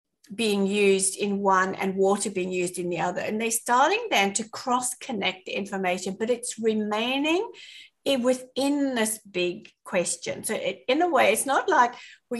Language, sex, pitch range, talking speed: English, female, 195-250 Hz, 165 wpm